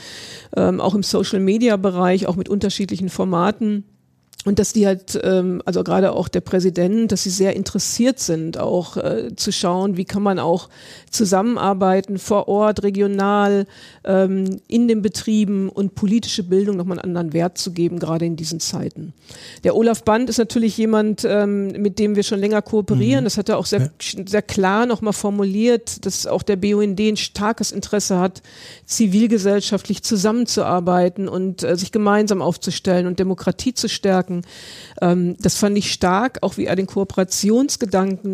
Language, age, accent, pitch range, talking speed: German, 50-69, German, 180-210 Hz, 150 wpm